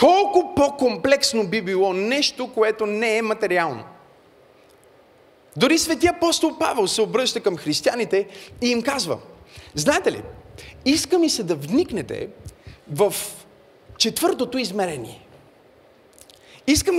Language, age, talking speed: Bulgarian, 30-49, 110 wpm